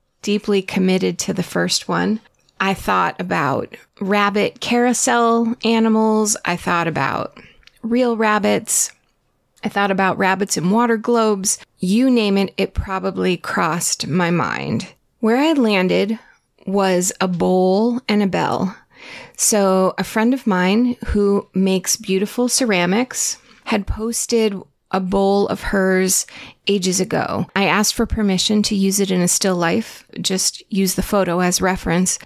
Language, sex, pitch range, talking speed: English, female, 185-220 Hz, 140 wpm